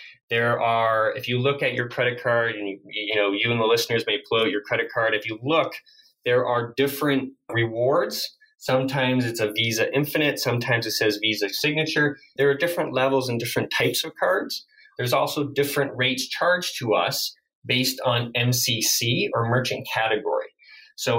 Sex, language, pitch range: male, English, 115-140 Hz